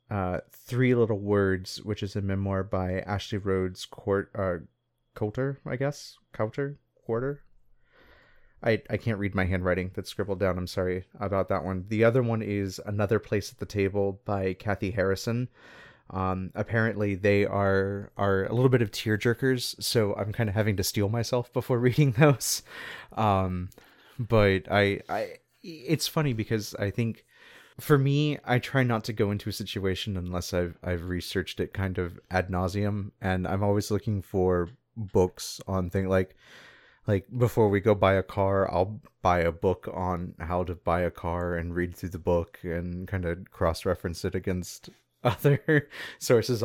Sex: male